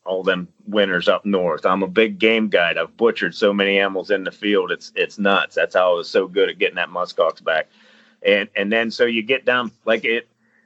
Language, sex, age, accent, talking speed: English, male, 30-49, American, 230 wpm